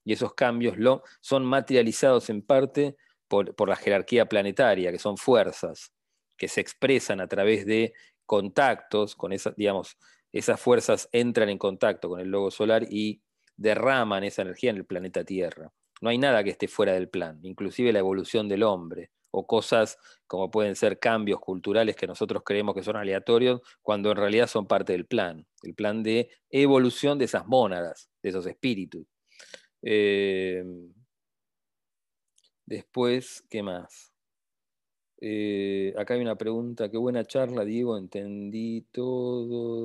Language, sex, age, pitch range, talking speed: English, male, 40-59, 100-125 Hz, 150 wpm